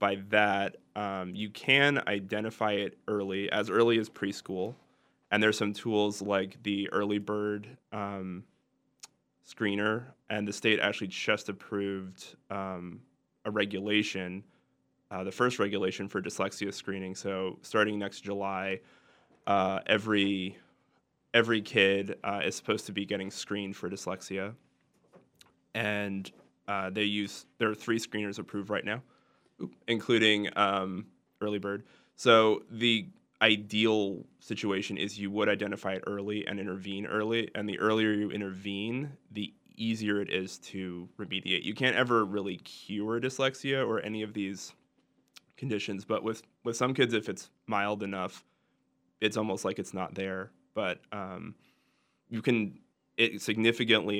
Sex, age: male, 20-39